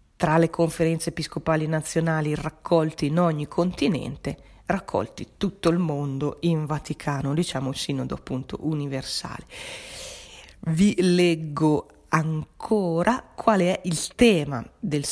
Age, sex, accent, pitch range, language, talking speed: 40-59, female, native, 150-180 Hz, Italian, 110 wpm